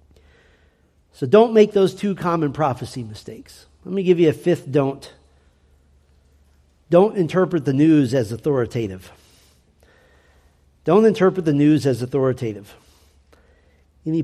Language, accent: English, American